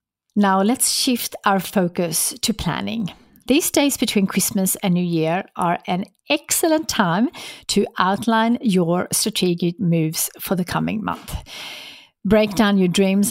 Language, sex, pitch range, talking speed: English, female, 175-225 Hz, 140 wpm